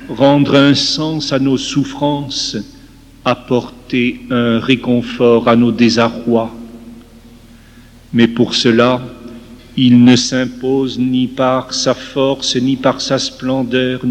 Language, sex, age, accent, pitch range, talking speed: French, male, 50-69, French, 120-140 Hz, 110 wpm